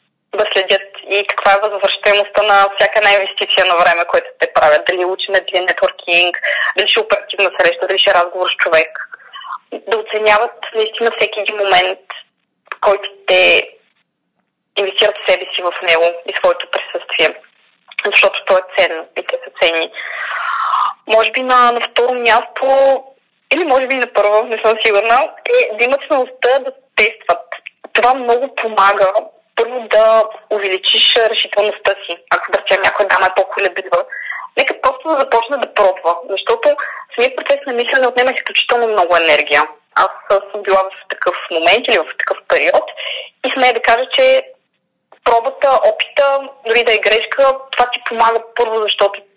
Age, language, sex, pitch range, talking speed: 20-39, Bulgarian, female, 195-250 Hz, 155 wpm